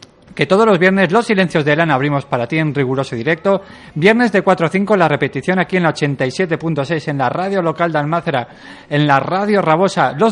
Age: 40-59